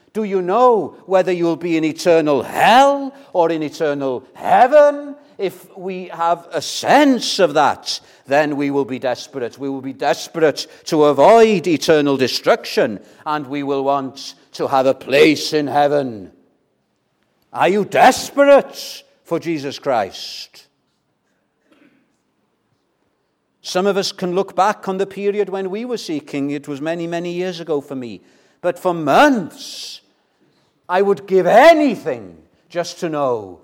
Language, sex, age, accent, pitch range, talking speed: English, male, 50-69, British, 135-195 Hz, 145 wpm